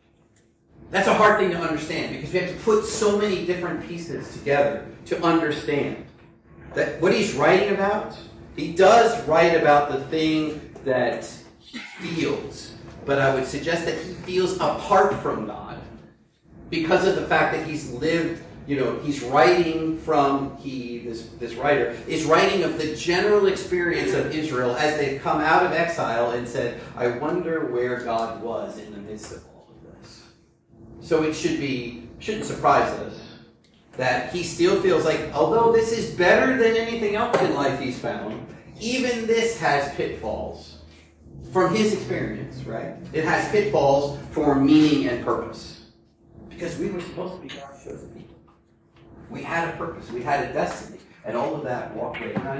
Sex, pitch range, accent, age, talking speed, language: male, 135-180 Hz, American, 40-59, 170 wpm, English